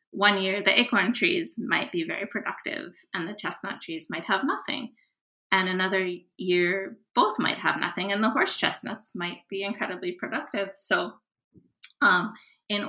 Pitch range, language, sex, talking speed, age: 180-255 Hz, English, female, 160 wpm, 20-39